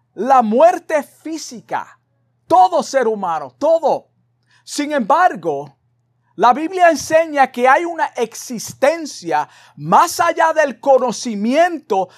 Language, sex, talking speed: Spanish, male, 100 wpm